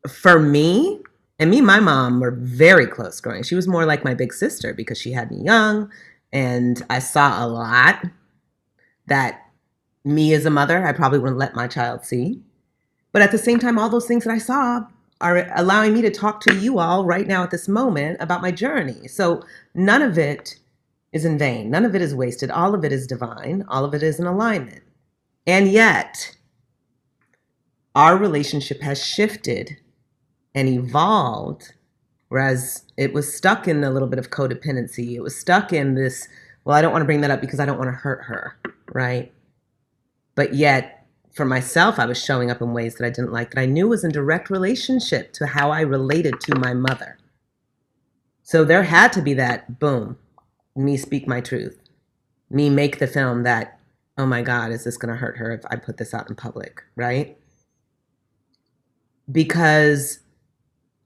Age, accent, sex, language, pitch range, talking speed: 30-49, American, female, English, 125-180 Hz, 185 wpm